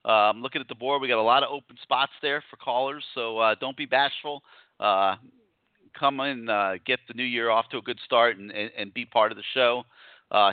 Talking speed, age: 245 wpm, 40-59